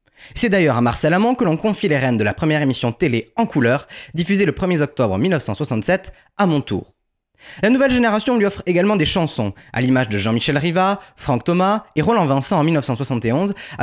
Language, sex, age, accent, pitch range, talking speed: French, male, 20-39, French, 120-190 Hz, 195 wpm